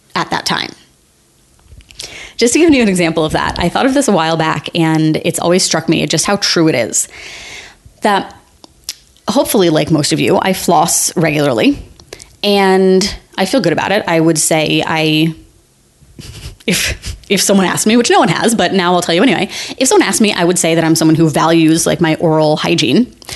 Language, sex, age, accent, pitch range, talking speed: English, female, 20-39, American, 160-215 Hz, 200 wpm